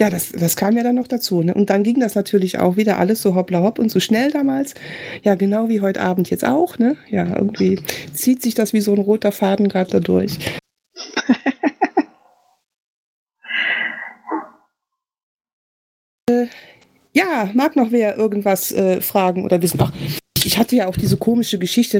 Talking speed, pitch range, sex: 170 wpm, 185-235 Hz, female